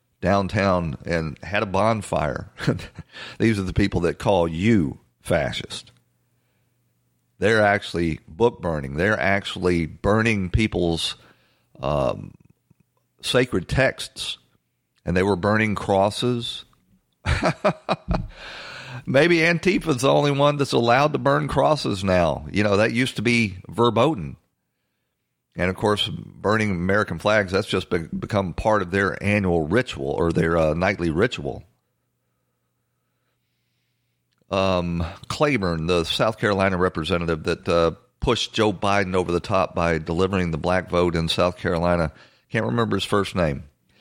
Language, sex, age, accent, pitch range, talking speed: English, male, 50-69, American, 85-110 Hz, 130 wpm